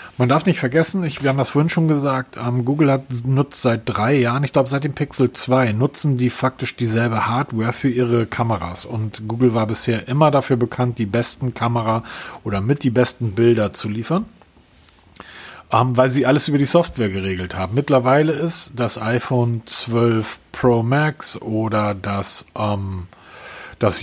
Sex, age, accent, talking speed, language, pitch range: male, 40-59, German, 165 wpm, German, 110-135 Hz